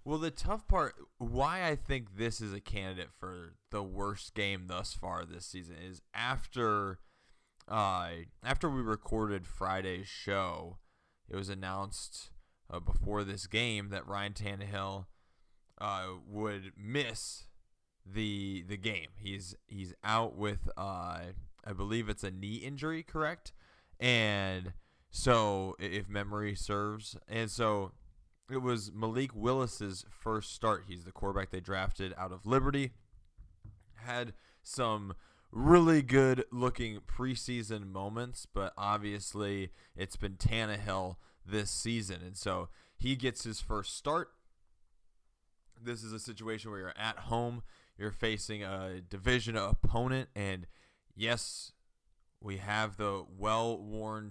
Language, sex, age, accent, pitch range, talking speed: English, male, 20-39, American, 95-115 Hz, 125 wpm